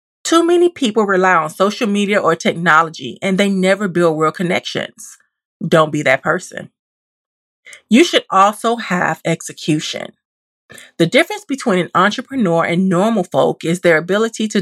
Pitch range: 170-225 Hz